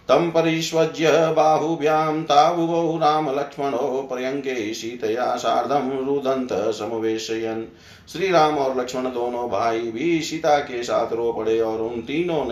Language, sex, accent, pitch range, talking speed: Hindi, male, native, 115-155 Hz, 110 wpm